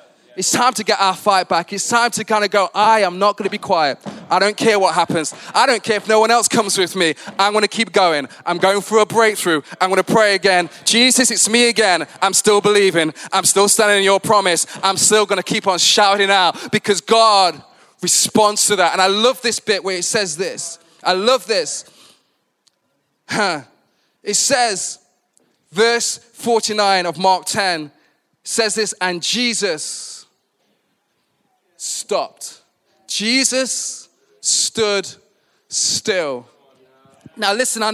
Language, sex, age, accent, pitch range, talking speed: English, male, 20-39, British, 190-235 Hz, 170 wpm